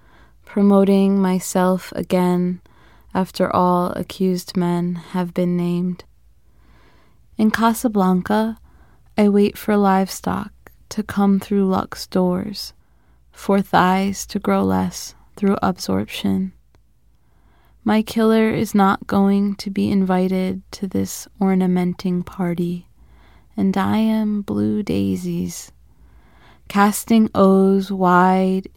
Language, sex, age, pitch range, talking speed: English, female, 20-39, 175-195 Hz, 100 wpm